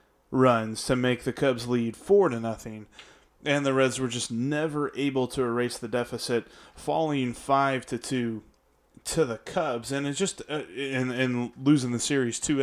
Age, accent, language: 30-49, American, English